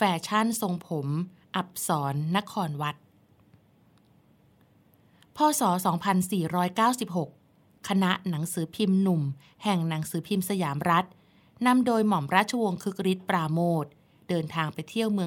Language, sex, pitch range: Thai, female, 155-195 Hz